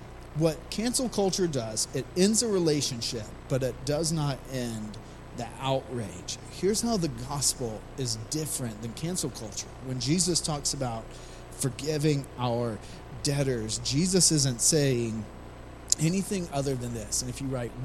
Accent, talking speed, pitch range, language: American, 140 wpm, 120-175 Hz, English